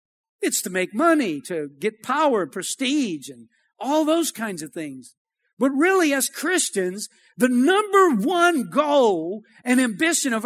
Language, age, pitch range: English, 50-69, 195-290 Hz